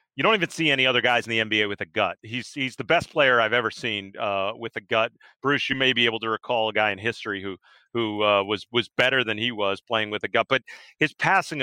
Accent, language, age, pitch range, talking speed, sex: American, English, 40-59, 120-155 Hz, 270 wpm, male